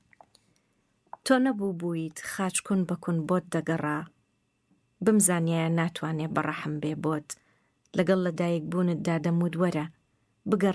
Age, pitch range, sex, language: 30-49, 155-190 Hz, female, English